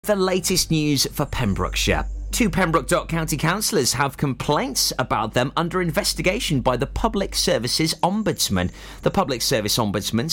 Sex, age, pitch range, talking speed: male, 30-49, 115-155 Hz, 145 wpm